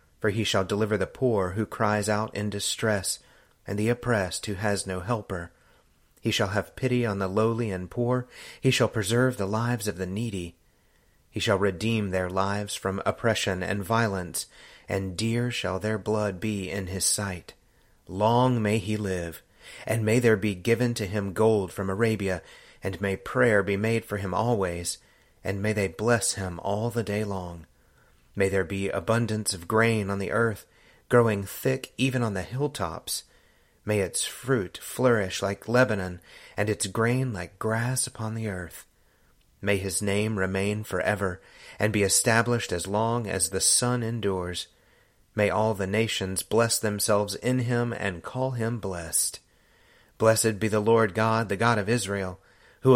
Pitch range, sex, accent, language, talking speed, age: 95-115 Hz, male, American, English, 170 wpm, 30-49